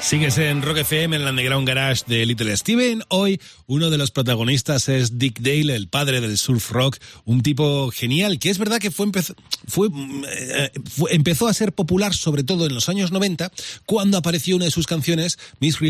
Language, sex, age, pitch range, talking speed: Spanish, male, 30-49, 110-155 Hz, 200 wpm